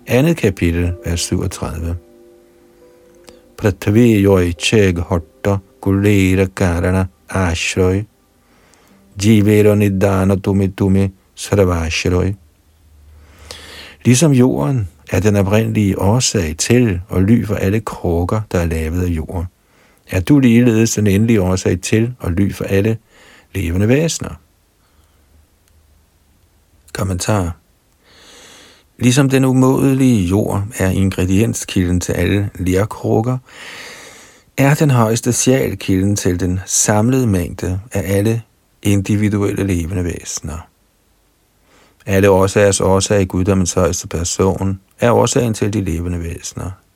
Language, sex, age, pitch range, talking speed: Danish, male, 60-79, 90-110 Hz, 85 wpm